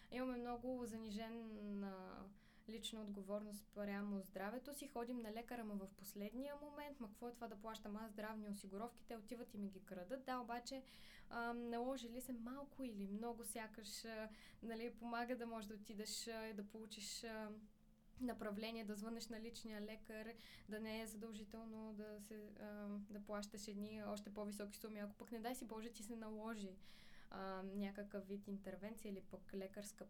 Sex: female